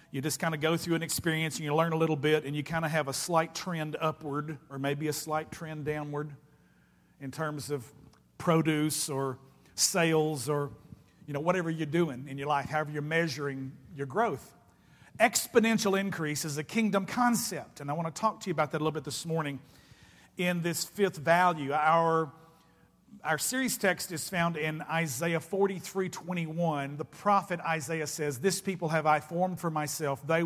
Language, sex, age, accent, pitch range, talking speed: English, male, 50-69, American, 150-175 Hz, 185 wpm